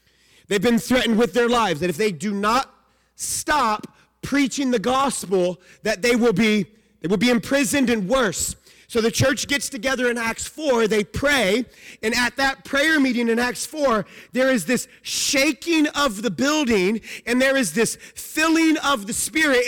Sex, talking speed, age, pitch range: male, 175 wpm, 30-49, 220-280 Hz